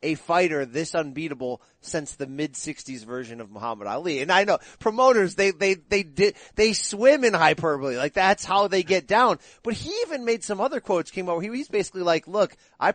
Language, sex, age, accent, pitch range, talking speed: English, male, 30-49, American, 140-190 Hz, 210 wpm